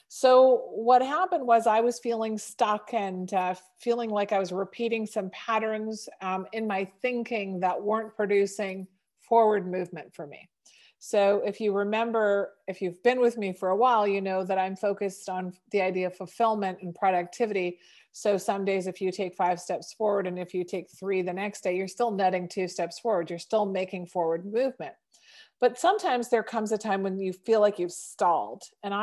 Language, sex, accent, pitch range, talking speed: English, female, American, 185-230 Hz, 190 wpm